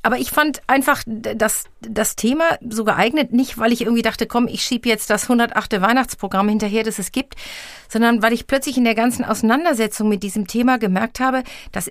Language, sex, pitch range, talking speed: German, female, 205-255 Hz, 195 wpm